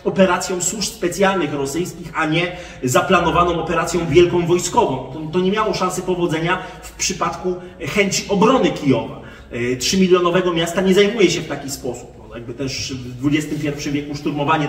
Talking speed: 150 wpm